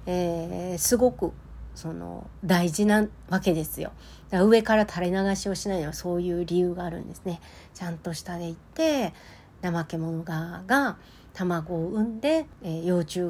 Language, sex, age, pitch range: Japanese, female, 40-59, 170-230 Hz